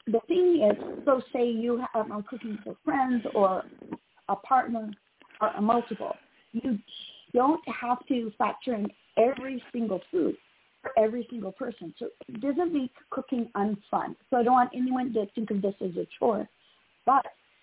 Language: English